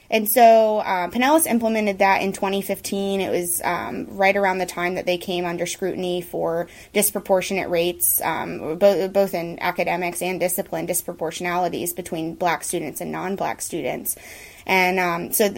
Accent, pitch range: American, 175-205 Hz